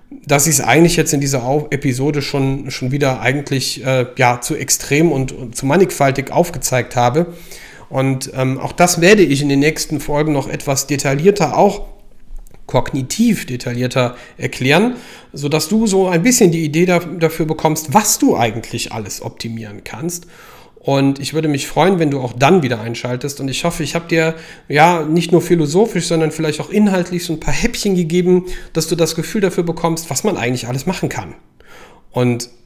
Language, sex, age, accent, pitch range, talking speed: German, male, 40-59, German, 135-170 Hz, 180 wpm